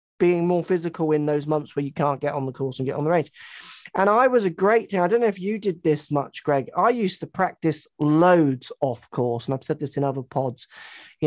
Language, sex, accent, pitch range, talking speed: English, male, British, 135-170 Hz, 250 wpm